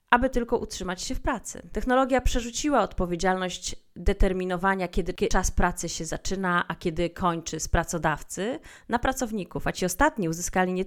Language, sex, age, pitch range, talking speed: Polish, female, 30-49, 175-210 Hz, 150 wpm